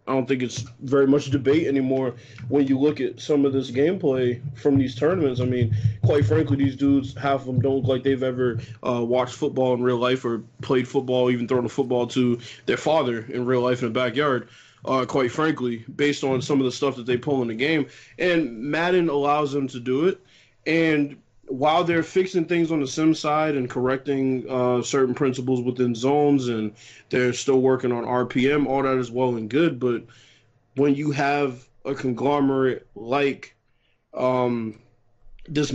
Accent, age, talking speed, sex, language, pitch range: American, 20-39, 195 wpm, male, English, 125-140 Hz